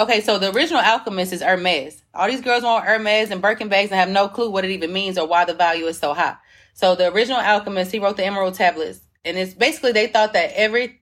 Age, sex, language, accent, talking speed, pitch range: 30-49, female, English, American, 250 wpm, 180-230 Hz